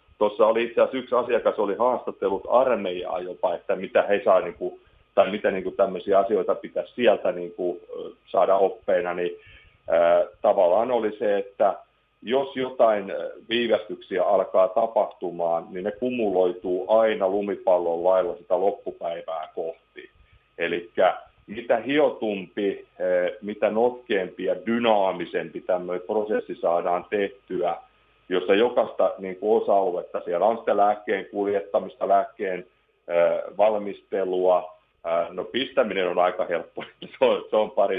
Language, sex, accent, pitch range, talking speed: Finnish, male, native, 95-130 Hz, 115 wpm